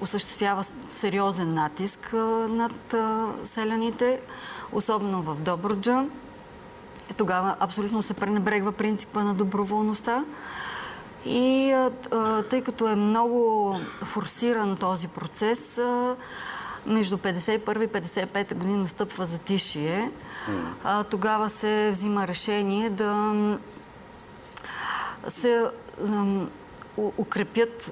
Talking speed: 85 wpm